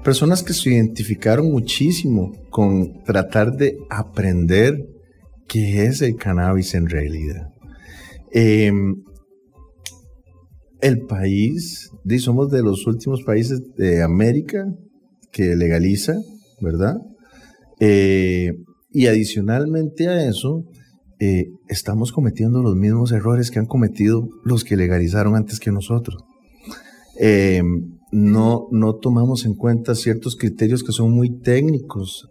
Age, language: 40-59, English